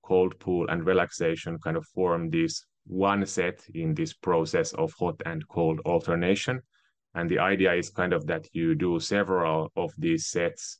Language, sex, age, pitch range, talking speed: English, male, 30-49, 85-110 Hz, 170 wpm